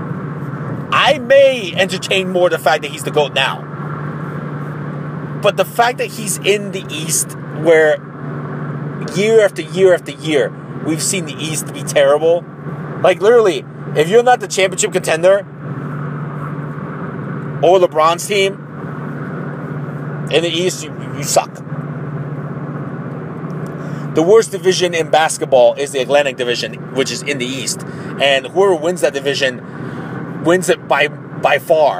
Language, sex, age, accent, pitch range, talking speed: English, male, 30-49, American, 145-170 Hz, 135 wpm